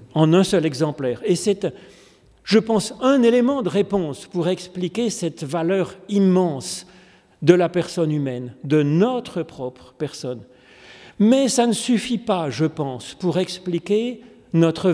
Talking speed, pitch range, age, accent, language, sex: 140 wpm, 155-205 Hz, 40-59, French, French, male